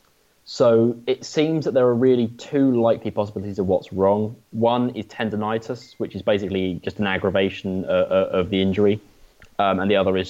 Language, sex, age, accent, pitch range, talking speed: English, male, 20-39, British, 95-125 Hz, 185 wpm